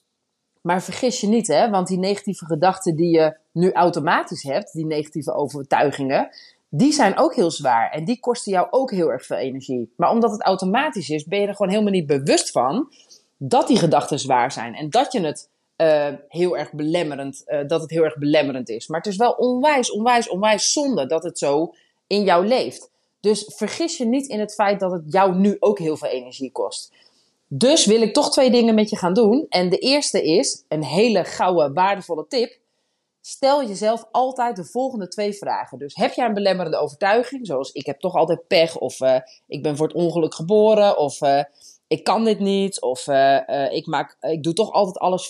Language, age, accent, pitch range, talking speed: Dutch, 30-49, Dutch, 155-225 Hz, 205 wpm